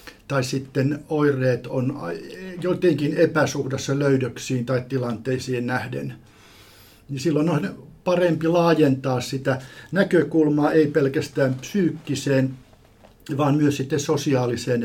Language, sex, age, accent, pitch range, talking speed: Finnish, male, 50-69, native, 130-155 Hz, 95 wpm